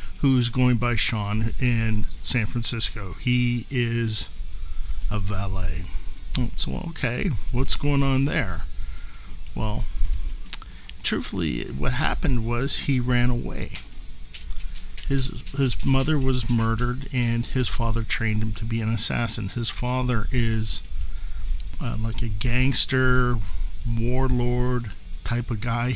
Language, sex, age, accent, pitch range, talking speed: English, male, 50-69, American, 95-125 Hz, 115 wpm